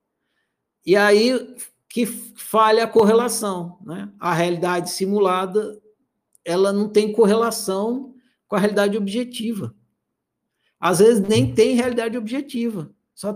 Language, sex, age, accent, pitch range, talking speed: Portuguese, male, 50-69, Brazilian, 170-225 Hz, 110 wpm